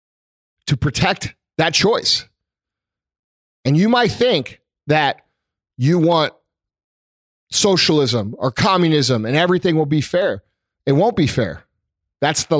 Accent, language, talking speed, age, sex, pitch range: American, English, 120 wpm, 40-59, male, 110-165 Hz